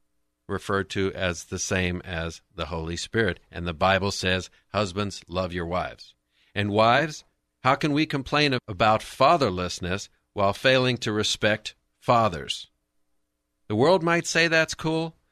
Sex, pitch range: male, 90-125 Hz